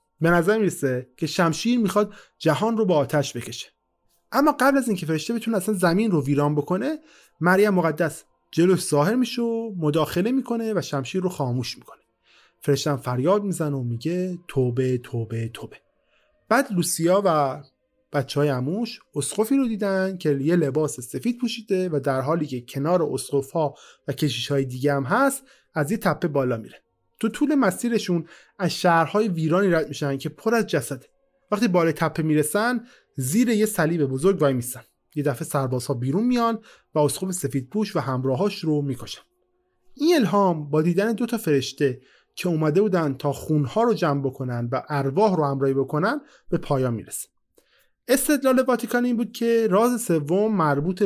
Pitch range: 140-215 Hz